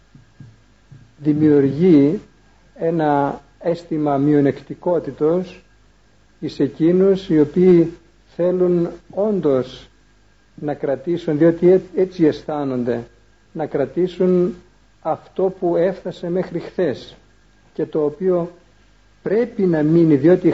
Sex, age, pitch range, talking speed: male, 50-69, 130-180 Hz, 85 wpm